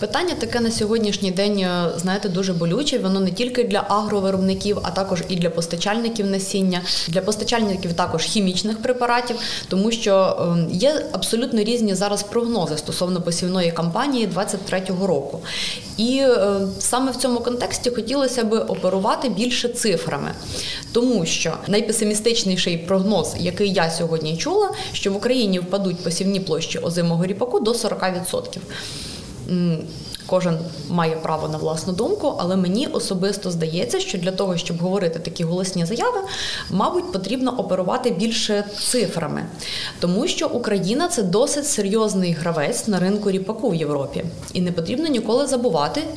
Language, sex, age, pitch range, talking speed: Ukrainian, female, 20-39, 170-230 Hz, 135 wpm